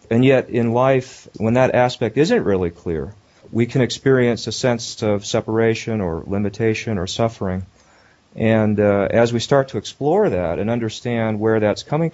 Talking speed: 170 wpm